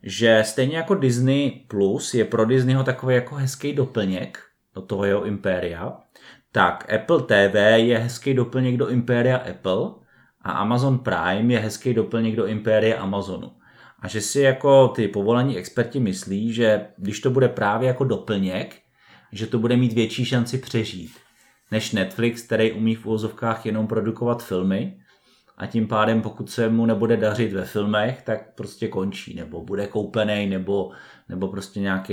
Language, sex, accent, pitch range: Czech, male, native, 105-120 Hz